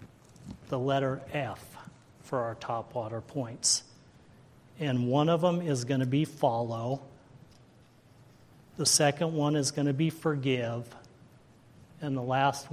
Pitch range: 120-140 Hz